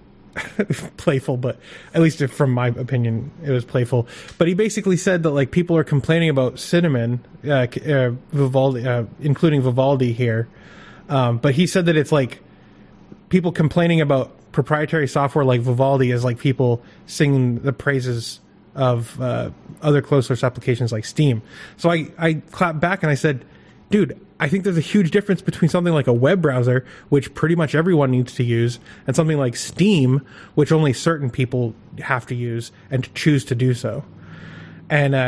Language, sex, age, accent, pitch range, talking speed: English, male, 20-39, American, 125-165 Hz, 170 wpm